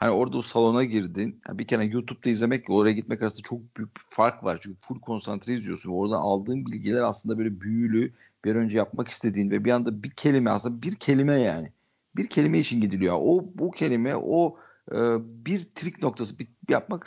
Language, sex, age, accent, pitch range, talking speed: Turkish, male, 50-69, native, 110-135 Hz, 185 wpm